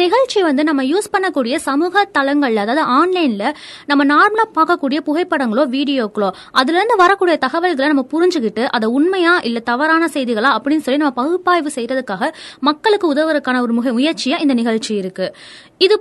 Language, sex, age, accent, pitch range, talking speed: Tamil, female, 20-39, native, 255-345 Hz, 135 wpm